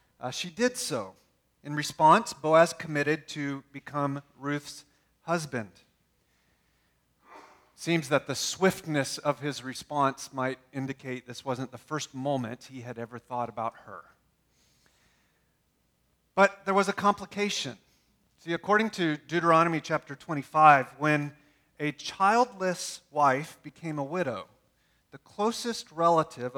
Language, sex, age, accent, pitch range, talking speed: English, male, 40-59, American, 130-170 Hz, 120 wpm